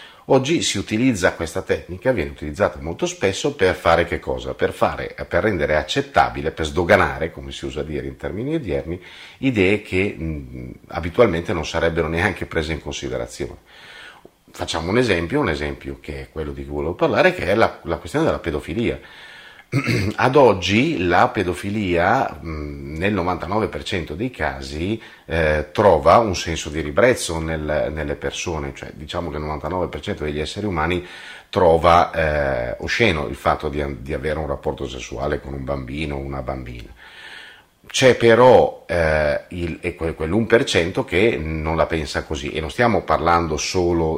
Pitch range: 75-95 Hz